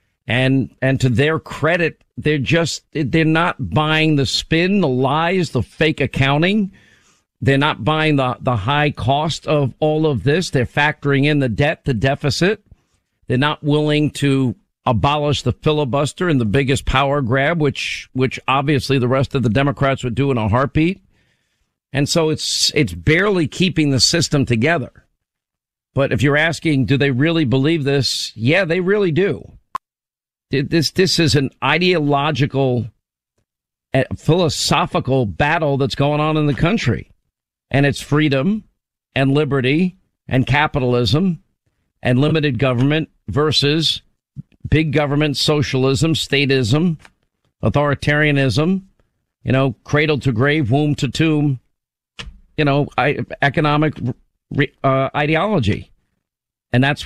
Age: 50-69